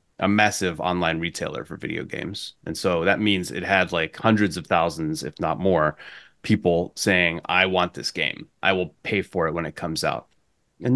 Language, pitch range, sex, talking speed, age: English, 90-115 Hz, male, 195 wpm, 30-49